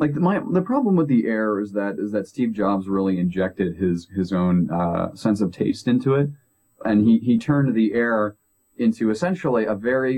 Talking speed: 200 wpm